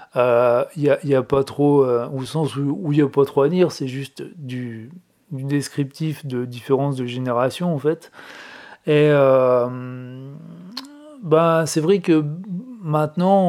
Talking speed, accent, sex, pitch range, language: 155 wpm, French, male, 125-155 Hz, French